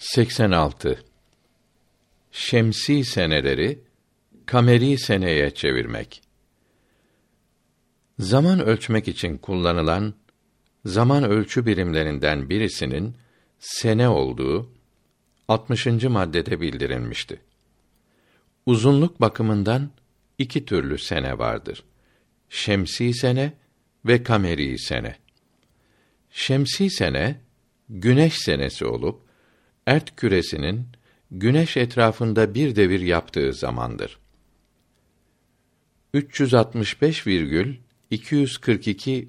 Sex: male